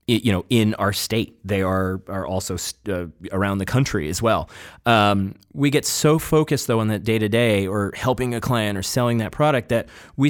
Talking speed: 215 wpm